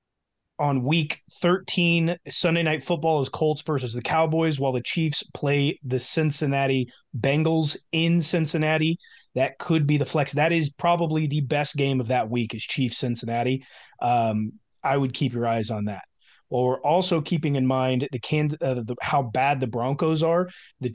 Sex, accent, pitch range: male, American, 130-155 Hz